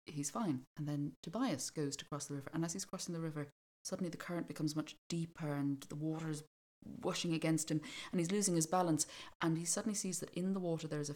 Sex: female